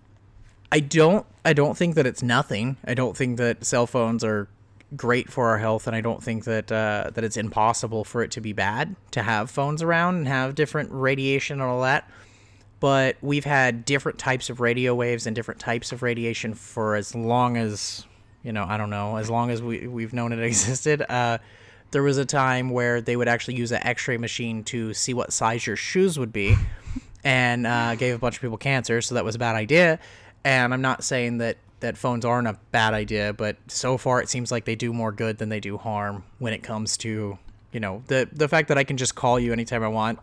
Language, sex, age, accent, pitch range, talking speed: English, male, 30-49, American, 110-125 Hz, 225 wpm